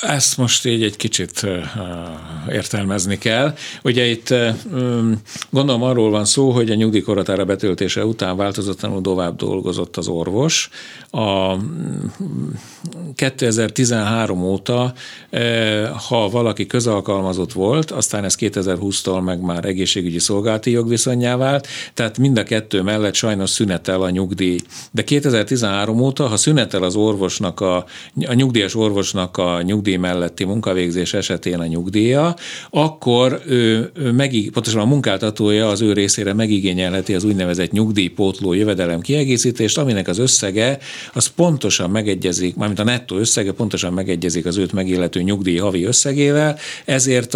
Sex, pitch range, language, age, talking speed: male, 95-120 Hz, Hungarian, 60-79, 125 wpm